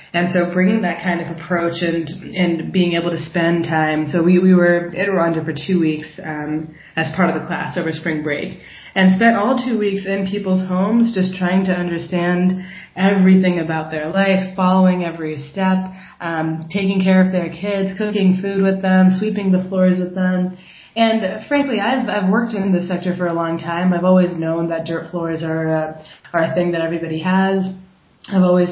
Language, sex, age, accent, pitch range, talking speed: English, female, 20-39, American, 165-190 Hz, 195 wpm